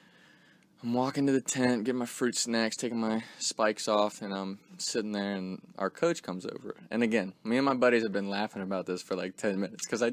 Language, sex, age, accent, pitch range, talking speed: English, male, 20-39, American, 105-150 Hz, 230 wpm